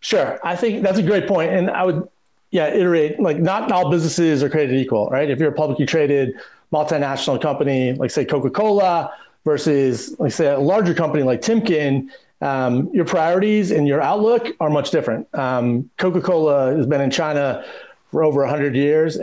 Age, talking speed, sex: 30-49, 180 wpm, male